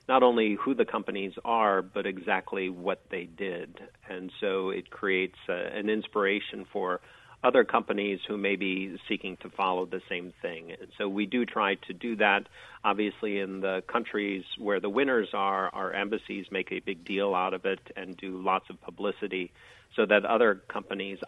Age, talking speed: 50-69, 175 wpm